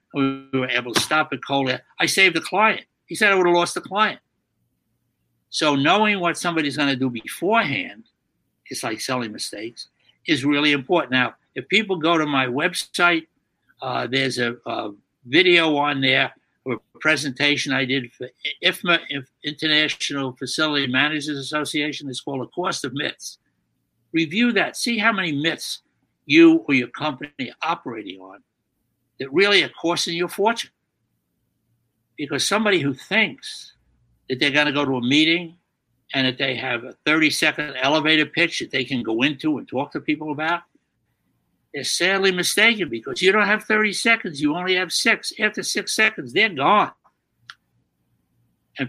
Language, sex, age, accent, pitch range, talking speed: English, male, 60-79, American, 135-175 Hz, 165 wpm